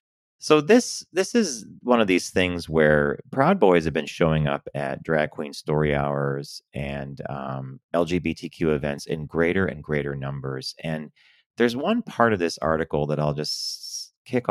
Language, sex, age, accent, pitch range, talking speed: English, male, 30-49, American, 70-85 Hz, 165 wpm